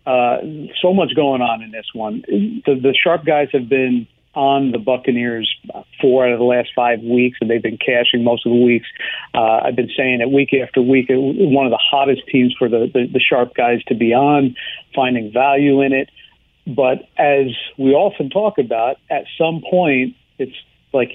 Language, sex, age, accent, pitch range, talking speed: English, male, 60-79, American, 120-140 Hz, 200 wpm